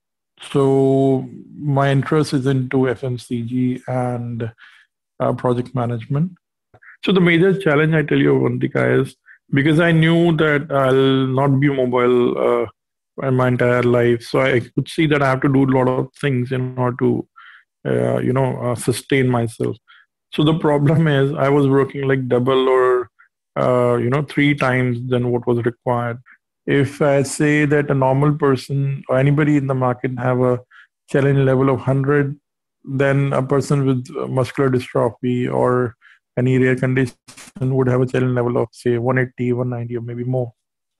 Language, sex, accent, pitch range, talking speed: English, male, Indian, 125-140 Hz, 165 wpm